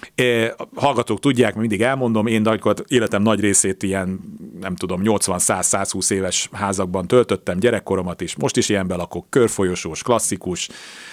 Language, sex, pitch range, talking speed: Hungarian, male, 95-120 Hz, 135 wpm